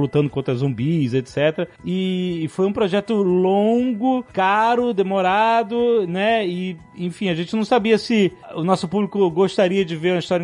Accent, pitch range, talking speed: Brazilian, 160-225 Hz, 155 wpm